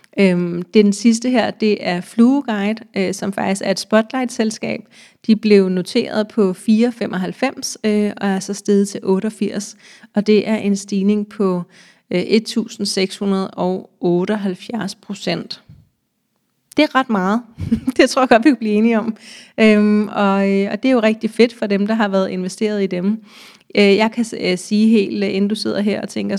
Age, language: 30-49, Danish